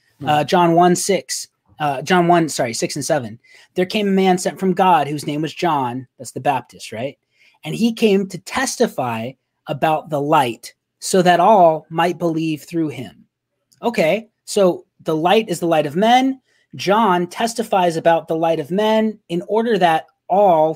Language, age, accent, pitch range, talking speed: English, 30-49, American, 155-200 Hz, 175 wpm